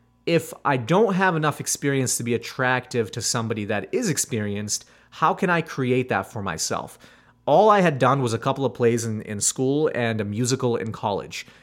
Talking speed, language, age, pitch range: 195 wpm, English, 30-49, 115-145 Hz